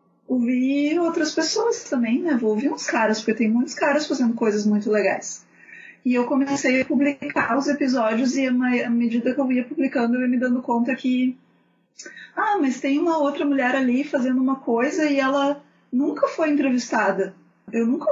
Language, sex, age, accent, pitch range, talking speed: Portuguese, female, 30-49, Brazilian, 220-280 Hz, 180 wpm